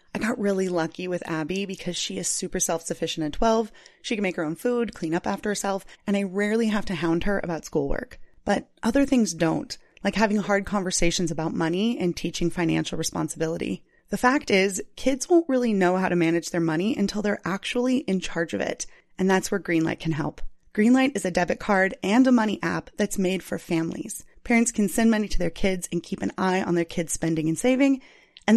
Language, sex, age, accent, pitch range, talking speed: English, female, 30-49, American, 170-215 Hz, 215 wpm